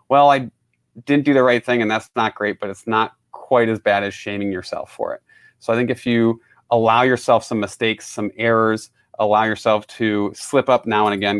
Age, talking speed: 30-49, 215 wpm